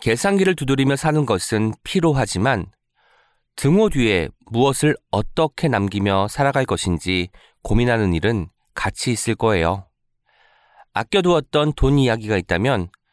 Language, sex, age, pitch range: Korean, male, 40-59, 100-150 Hz